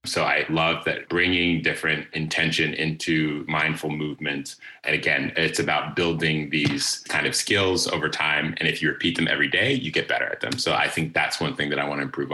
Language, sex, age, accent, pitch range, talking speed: English, male, 20-39, American, 75-85 Hz, 215 wpm